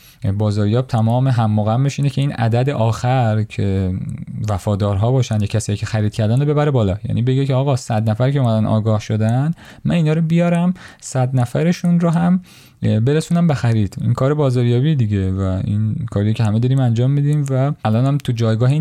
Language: Persian